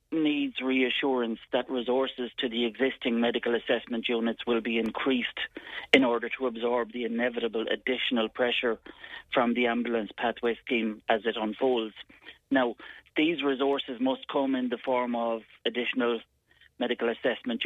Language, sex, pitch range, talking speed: English, male, 120-145 Hz, 140 wpm